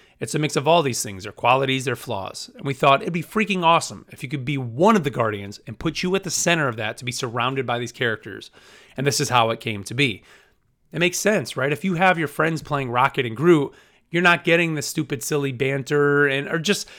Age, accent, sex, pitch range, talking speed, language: 30-49, American, male, 120-155 Hz, 250 wpm, English